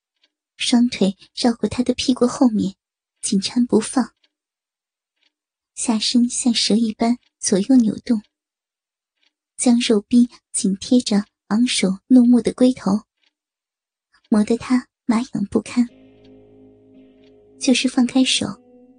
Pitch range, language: 220-255 Hz, Chinese